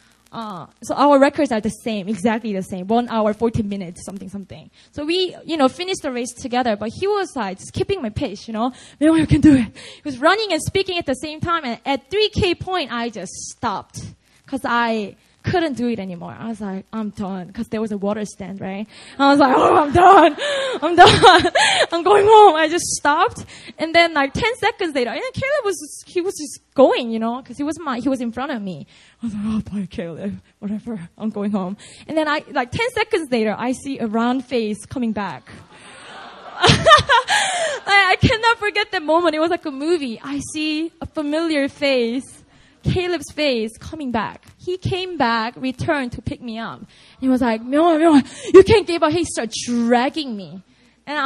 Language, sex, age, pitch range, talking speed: English, female, 20-39, 225-330 Hz, 205 wpm